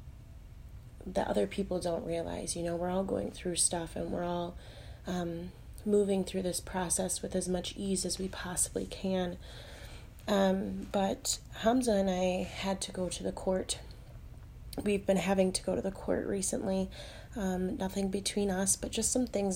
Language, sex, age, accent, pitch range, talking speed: English, female, 20-39, American, 175-200 Hz, 170 wpm